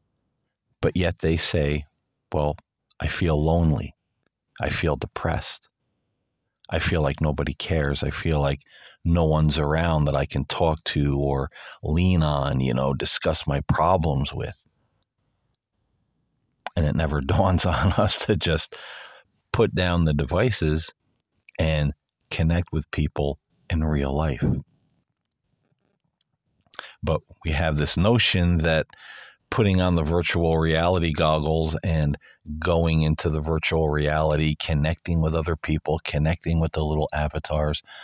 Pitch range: 75-85 Hz